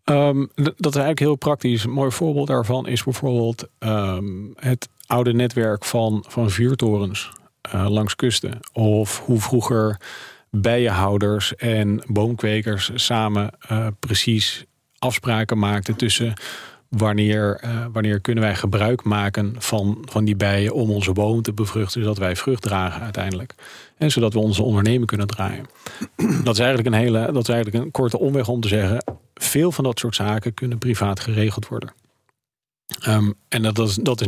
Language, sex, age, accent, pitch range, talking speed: Dutch, male, 40-59, Dutch, 105-125 Hz, 155 wpm